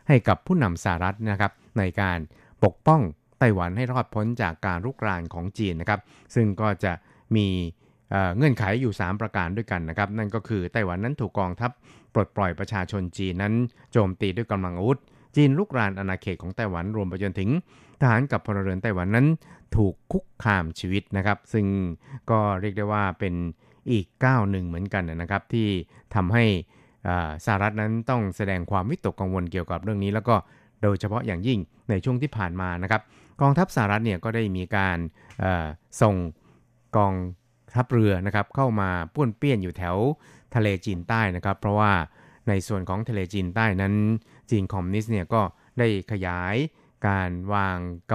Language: Thai